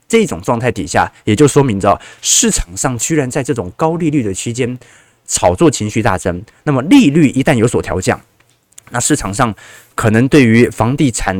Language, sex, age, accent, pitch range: Chinese, male, 20-39, native, 110-150 Hz